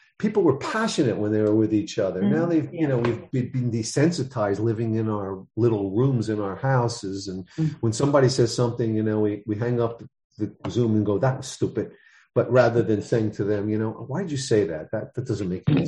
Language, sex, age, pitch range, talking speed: English, male, 50-69, 105-130 Hz, 230 wpm